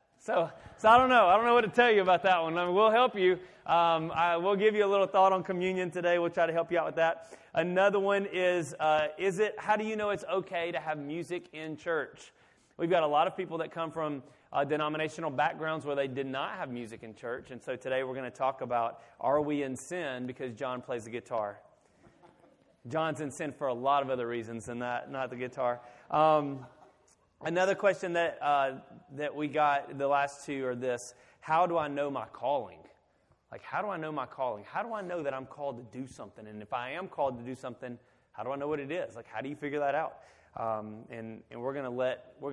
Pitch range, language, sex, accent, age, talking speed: 130-170 Hz, English, male, American, 30-49, 240 wpm